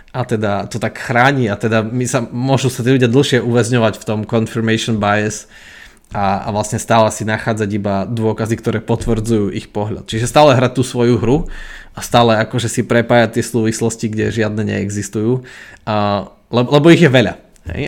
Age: 20-39